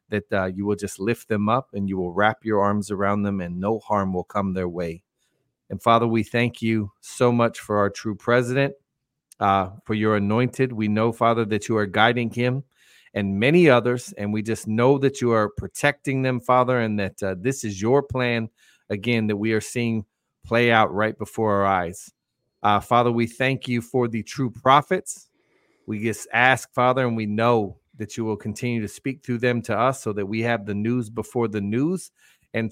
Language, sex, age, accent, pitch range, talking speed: English, male, 40-59, American, 105-130 Hz, 205 wpm